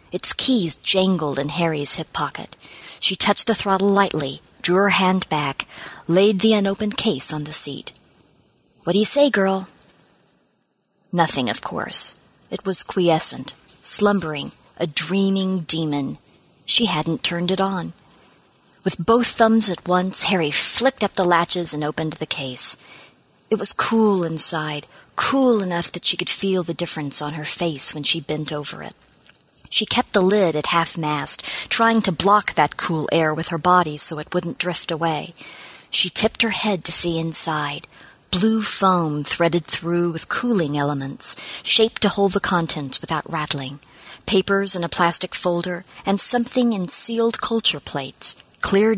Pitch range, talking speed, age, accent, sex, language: 155-200 Hz, 160 wpm, 40-59, American, female, English